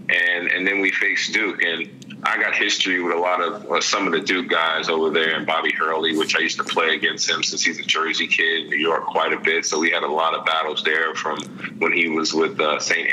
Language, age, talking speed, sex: English, 30-49, 265 wpm, male